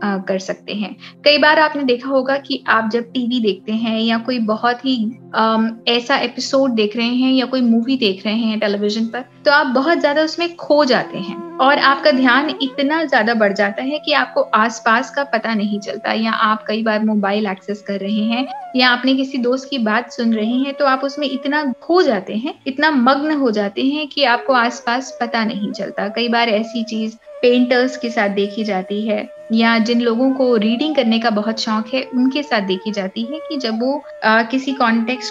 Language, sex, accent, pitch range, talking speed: Hindi, female, native, 220-275 Hz, 210 wpm